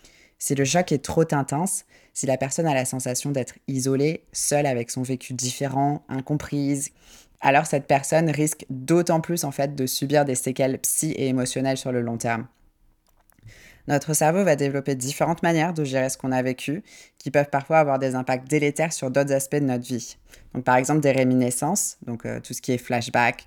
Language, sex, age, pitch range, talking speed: French, female, 20-39, 125-145 Hz, 195 wpm